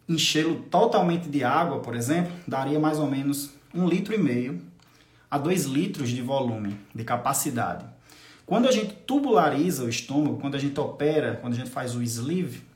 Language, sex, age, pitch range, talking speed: Portuguese, male, 20-39, 135-175 Hz, 165 wpm